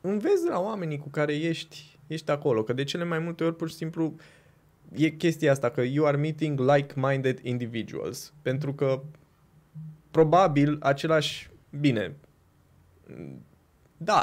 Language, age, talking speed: Romanian, 20-39, 135 wpm